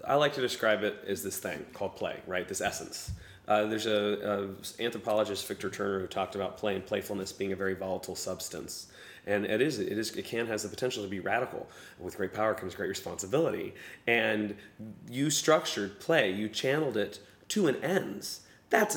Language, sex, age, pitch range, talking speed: English, male, 30-49, 105-130 Hz, 190 wpm